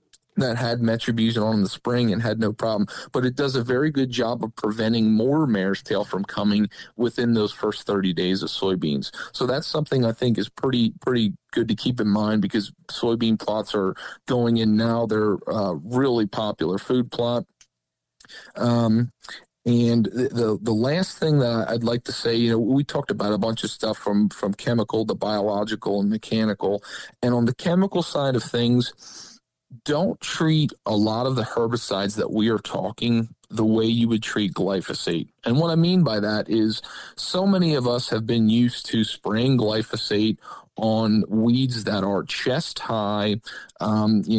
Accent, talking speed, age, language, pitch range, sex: American, 180 wpm, 40-59, English, 105-130 Hz, male